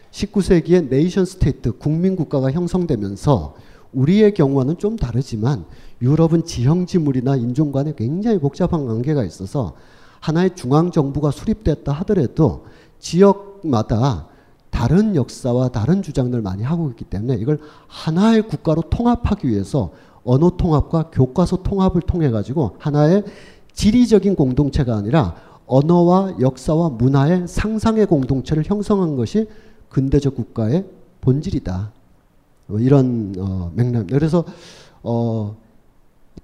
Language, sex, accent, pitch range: Korean, male, native, 130-185 Hz